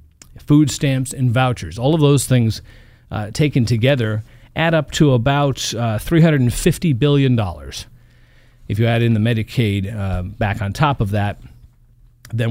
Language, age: English, 40-59